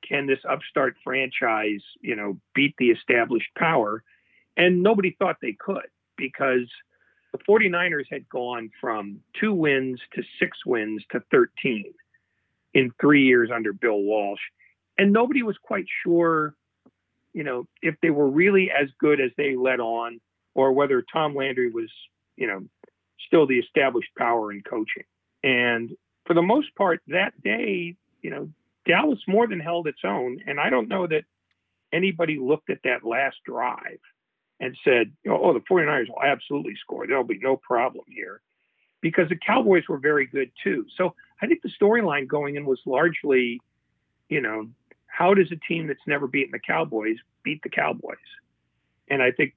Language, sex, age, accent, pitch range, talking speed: English, male, 40-59, American, 120-180 Hz, 165 wpm